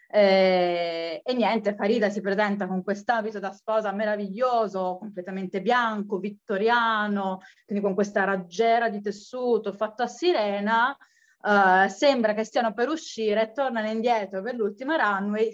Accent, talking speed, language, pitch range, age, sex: native, 135 wpm, Italian, 195-235 Hz, 20-39, female